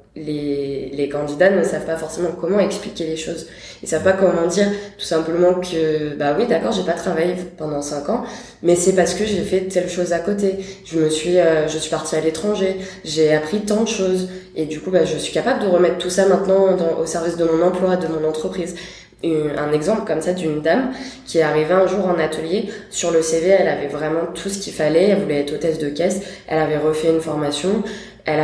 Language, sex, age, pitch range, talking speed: French, female, 20-39, 155-190 Hz, 230 wpm